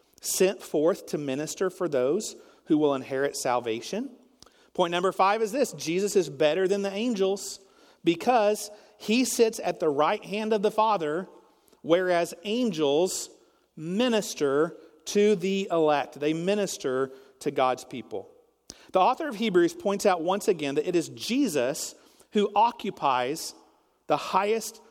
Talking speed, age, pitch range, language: 140 wpm, 40-59, 175-240 Hz, English